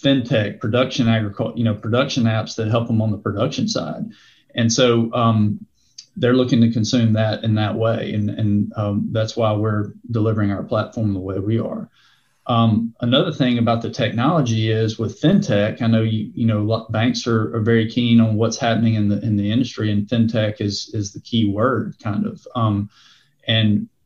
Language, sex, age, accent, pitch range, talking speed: English, male, 30-49, American, 110-120 Hz, 190 wpm